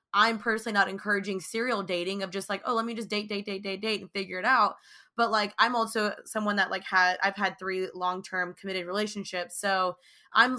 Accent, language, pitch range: American, English, 195-225 Hz